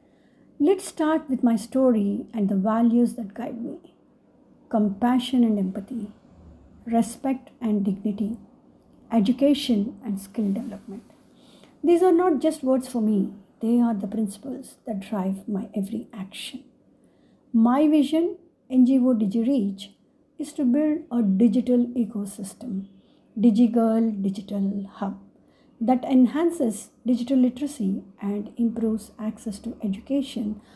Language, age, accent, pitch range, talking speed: English, 60-79, Indian, 215-265 Hz, 115 wpm